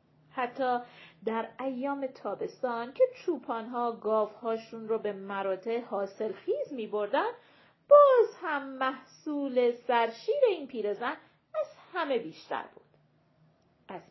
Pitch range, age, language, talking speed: 205-310 Hz, 40-59, Persian, 100 wpm